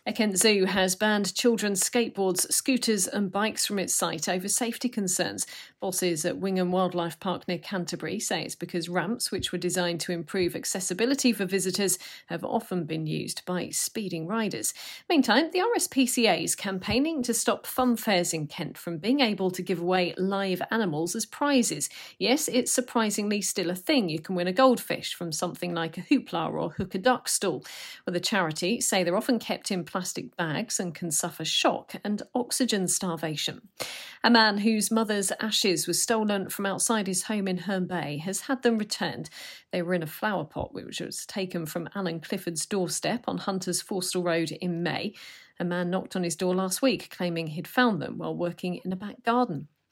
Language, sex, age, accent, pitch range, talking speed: English, female, 40-59, British, 175-225 Hz, 190 wpm